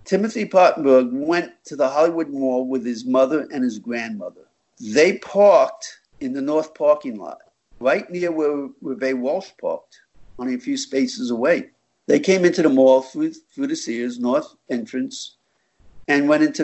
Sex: male